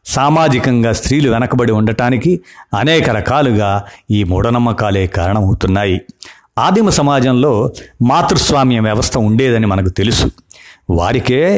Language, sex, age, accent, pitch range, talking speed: Telugu, male, 50-69, native, 105-130 Hz, 90 wpm